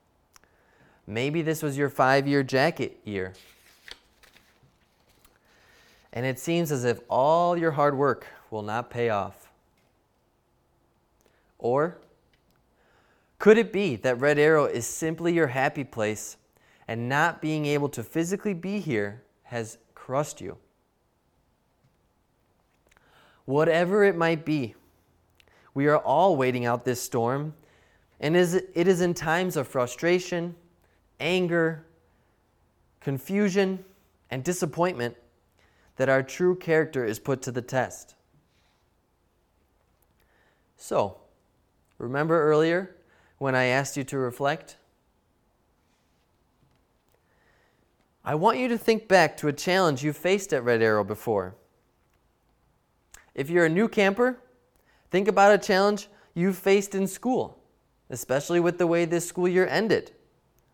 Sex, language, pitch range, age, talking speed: male, English, 120-180 Hz, 20-39, 120 wpm